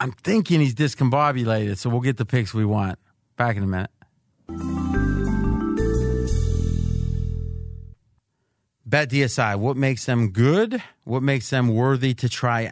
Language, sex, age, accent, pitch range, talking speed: English, male, 40-59, American, 105-135 Hz, 125 wpm